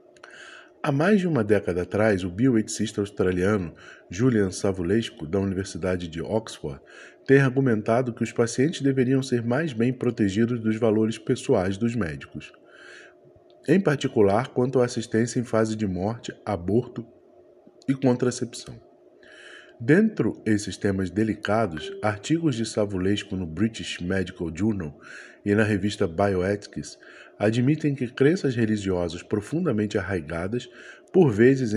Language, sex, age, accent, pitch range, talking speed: Portuguese, male, 20-39, Brazilian, 100-130 Hz, 125 wpm